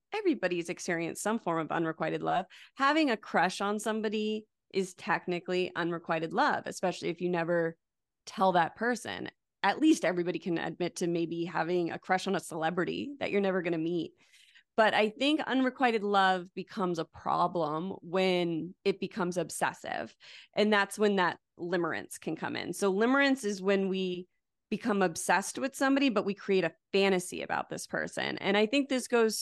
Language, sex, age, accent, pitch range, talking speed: English, female, 30-49, American, 175-215 Hz, 170 wpm